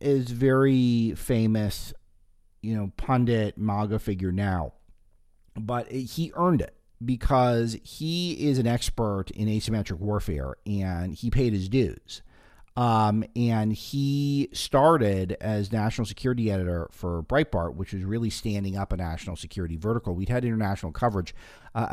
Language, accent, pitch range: English, American, 95-120 Hz